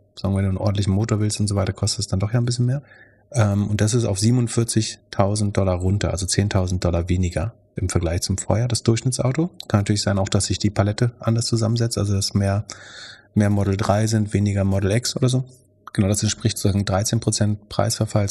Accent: German